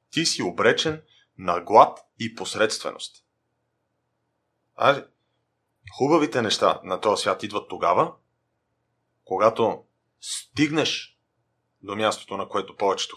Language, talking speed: Bulgarian, 100 wpm